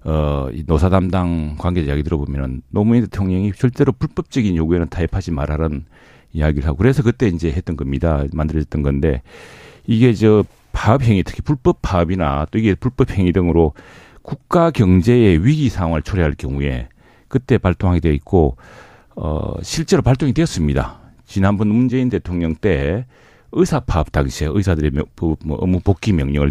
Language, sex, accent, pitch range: Korean, male, native, 80-115 Hz